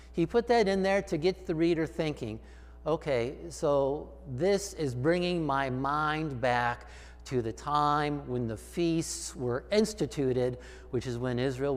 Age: 50-69